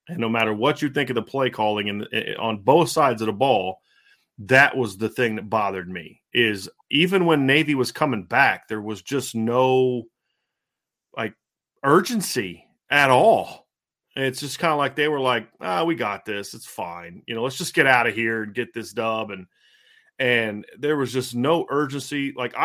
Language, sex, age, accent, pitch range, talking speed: English, male, 40-59, American, 115-145 Hz, 195 wpm